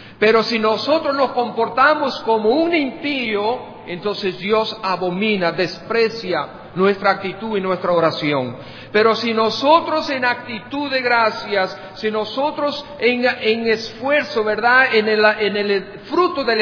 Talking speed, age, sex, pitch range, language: 125 wpm, 50-69, male, 180-245 Hz, English